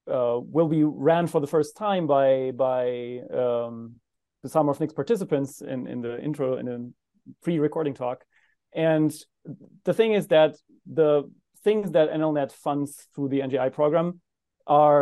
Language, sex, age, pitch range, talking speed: English, male, 30-49, 140-175 Hz, 150 wpm